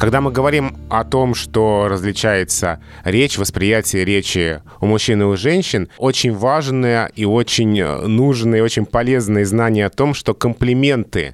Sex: male